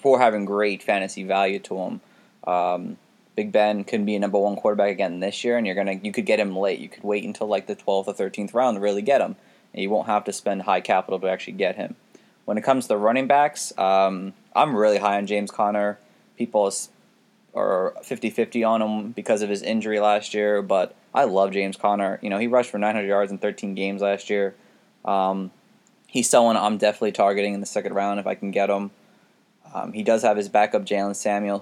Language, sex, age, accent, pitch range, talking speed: English, male, 20-39, American, 100-110 Hz, 225 wpm